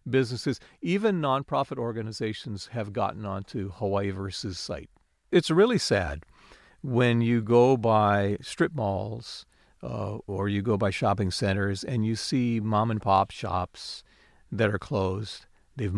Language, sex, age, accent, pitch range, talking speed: English, male, 50-69, American, 95-125 Hz, 140 wpm